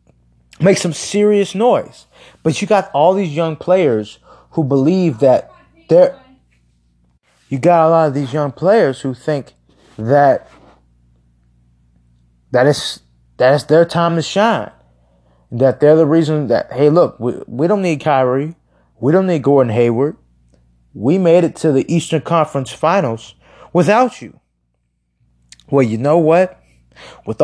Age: 20-39